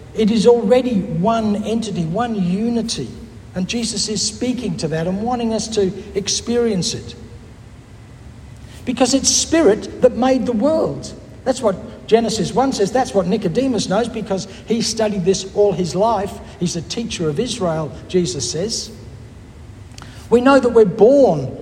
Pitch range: 170-230 Hz